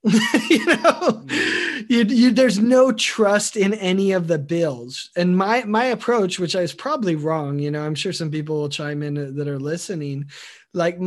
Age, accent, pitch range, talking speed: 20-39, American, 150-200 Hz, 185 wpm